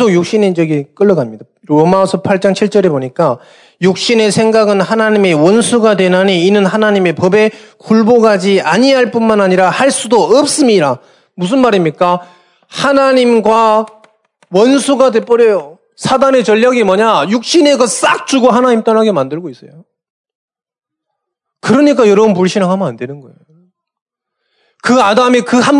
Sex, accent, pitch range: male, native, 195-250 Hz